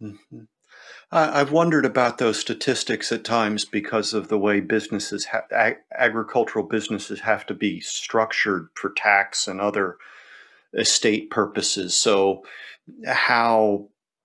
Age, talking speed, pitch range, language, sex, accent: 40-59, 120 wpm, 105-120 Hz, English, male, American